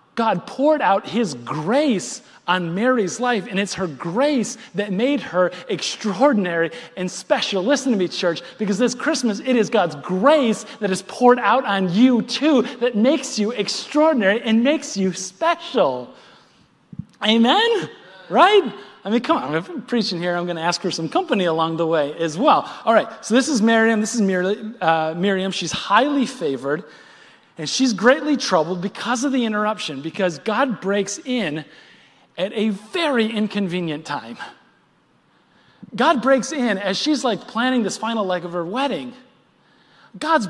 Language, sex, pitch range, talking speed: English, male, 185-260 Hz, 160 wpm